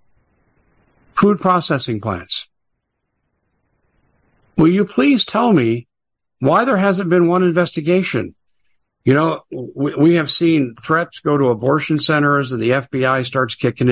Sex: male